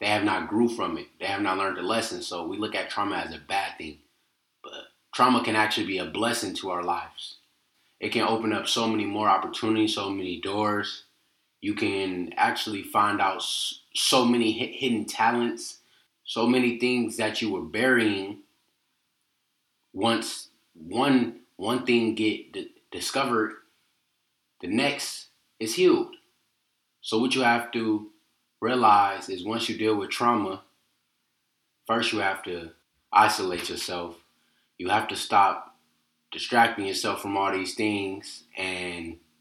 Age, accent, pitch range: 20-39, American, 90-120 Hz